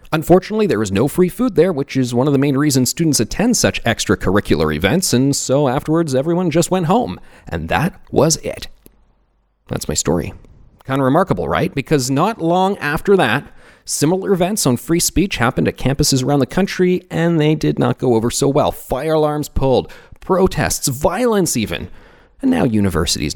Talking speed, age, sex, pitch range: 180 wpm, 40-59, male, 110-170 Hz